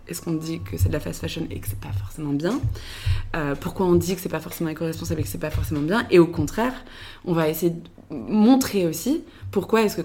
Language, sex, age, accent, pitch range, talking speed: French, female, 20-39, French, 165-210 Hz, 270 wpm